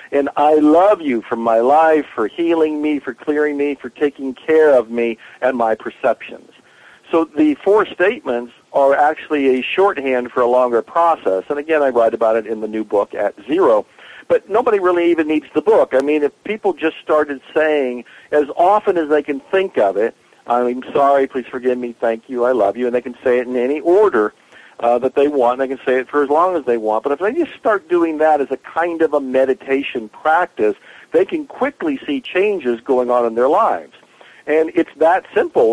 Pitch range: 125-175 Hz